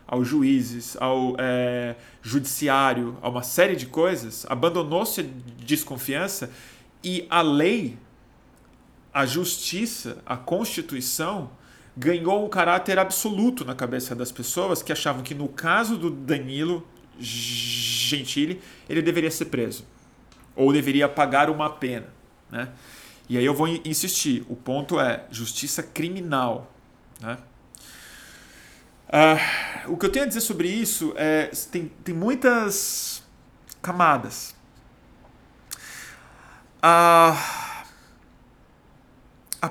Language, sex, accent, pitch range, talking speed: Portuguese, male, Brazilian, 125-170 Hz, 110 wpm